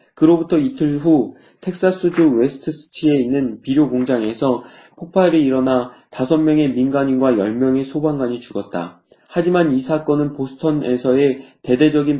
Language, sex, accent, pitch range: Korean, male, native, 125-165 Hz